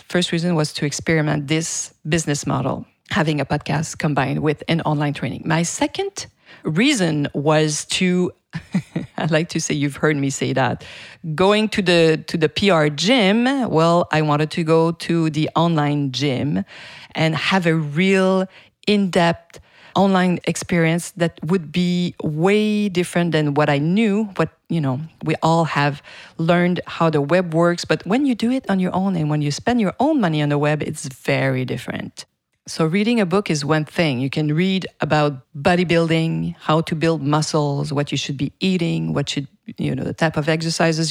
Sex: female